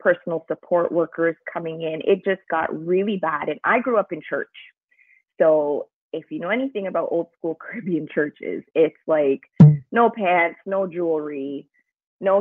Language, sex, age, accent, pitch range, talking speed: English, female, 20-39, American, 155-185 Hz, 160 wpm